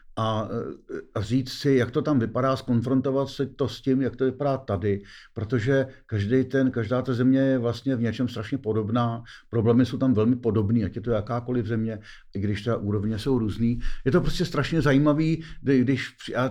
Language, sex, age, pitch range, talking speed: Czech, male, 50-69, 110-135 Hz, 190 wpm